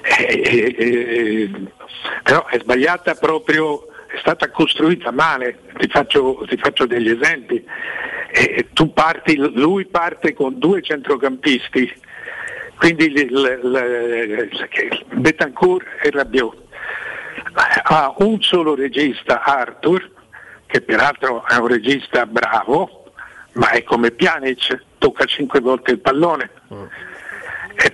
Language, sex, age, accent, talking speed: Italian, male, 60-79, native, 105 wpm